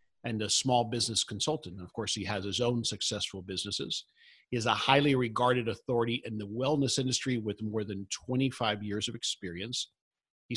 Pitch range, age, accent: 105-135 Hz, 50-69, American